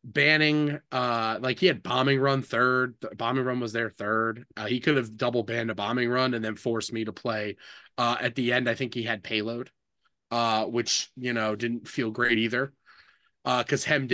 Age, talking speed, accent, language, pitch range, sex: 30-49, 210 wpm, American, English, 115-150 Hz, male